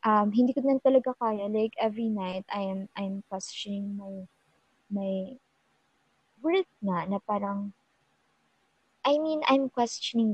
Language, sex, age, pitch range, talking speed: Filipino, male, 20-39, 190-235 Hz, 130 wpm